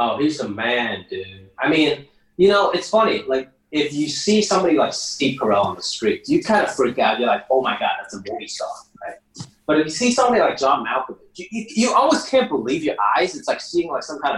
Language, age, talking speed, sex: English, 20-39, 245 wpm, male